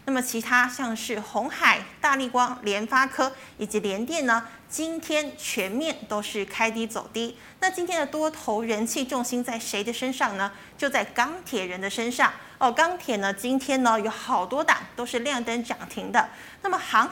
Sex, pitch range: female, 220-280 Hz